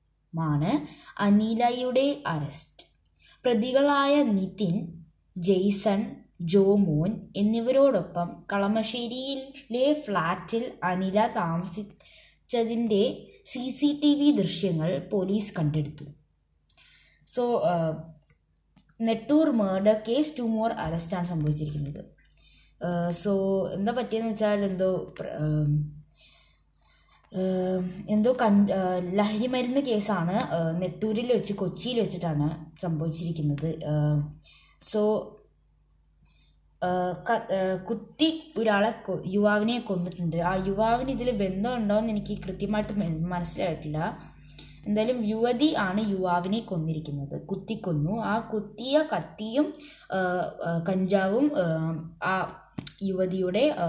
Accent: native